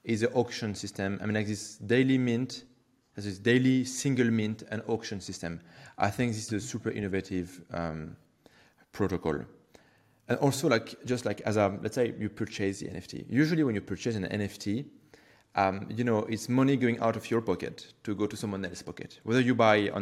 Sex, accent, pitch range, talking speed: male, French, 100-130 Hz, 200 wpm